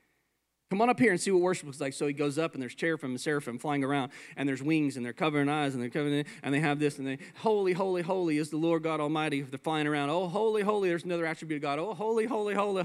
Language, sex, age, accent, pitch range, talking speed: English, male, 40-59, American, 155-235 Hz, 280 wpm